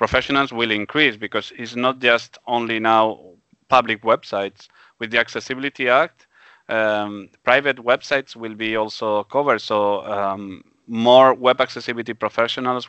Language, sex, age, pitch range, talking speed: English, male, 30-49, 105-120 Hz, 130 wpm